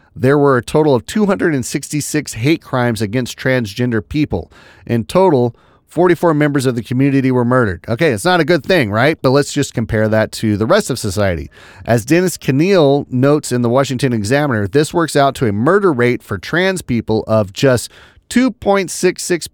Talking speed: 180 wpm